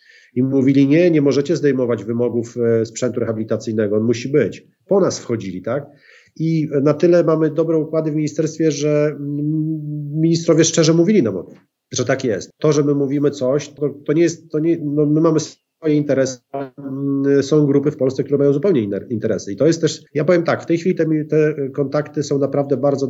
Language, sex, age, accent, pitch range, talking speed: Polish, male, 40-59, native, 125-150 Hz, 190 wpm